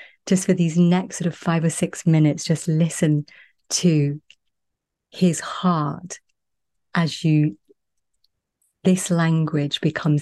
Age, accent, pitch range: 30-49, British, 145-170 Hz